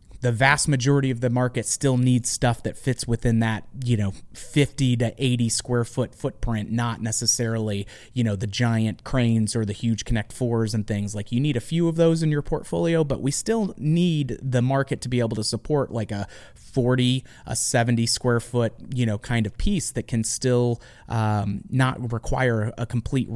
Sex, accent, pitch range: male, American, 115-130 Hz